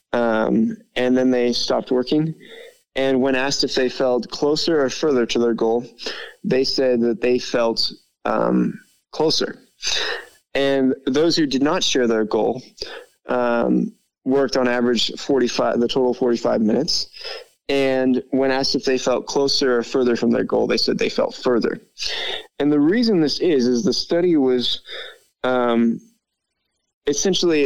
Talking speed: 150 wpm